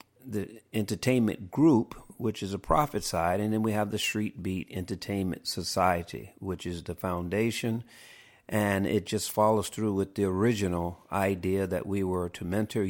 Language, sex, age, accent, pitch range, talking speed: English, male, 50-69, American, 90-110 Hz, 165 wpm